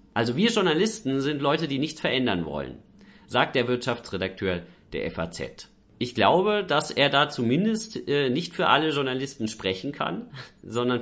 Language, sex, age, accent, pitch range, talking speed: German, male, 40-59, German, 110-145 Hz, 155 wpm